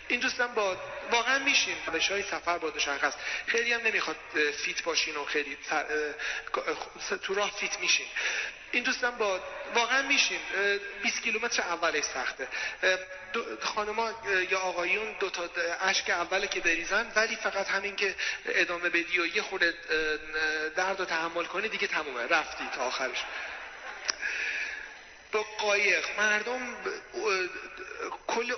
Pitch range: 165-225 Hz